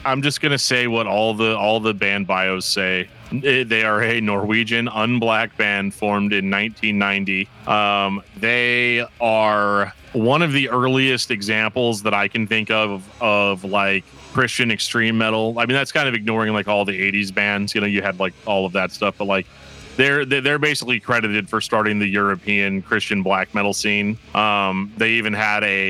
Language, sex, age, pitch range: English, male, 30-49, 100-115 Hz